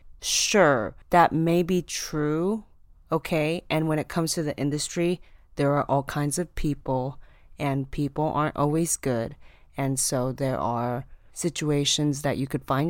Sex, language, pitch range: female, English, 135-180 Hz